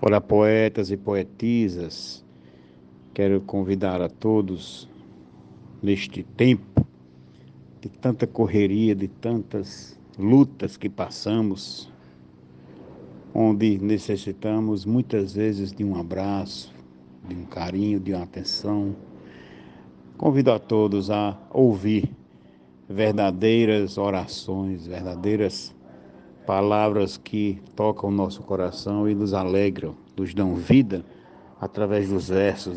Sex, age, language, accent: male, 60-79, Portuguese, Brazilian